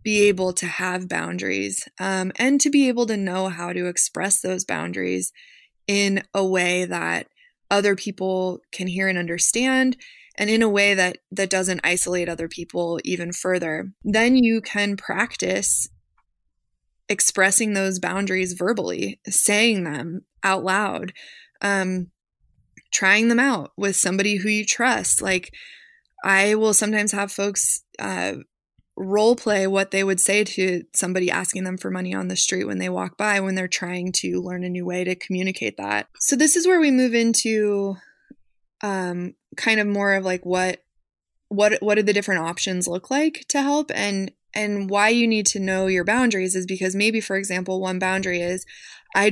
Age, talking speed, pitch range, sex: 20-39, 170 wpm, 180-210 Hz, female